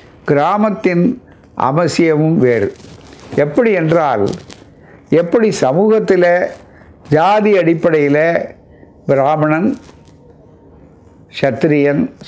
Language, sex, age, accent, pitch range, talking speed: Tamil, male, 60-79, native, 140-190 Hz, 55 wpm